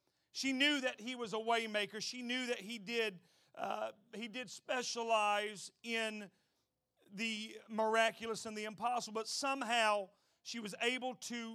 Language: English